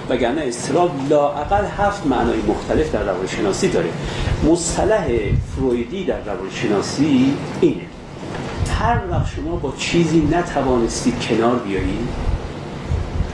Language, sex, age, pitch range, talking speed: Persian, male, 40-59, 115-150 Hz, 105 wpm